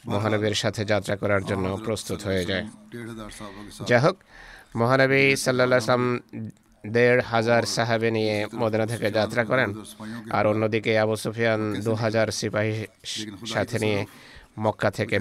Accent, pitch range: native, 105-120 Hz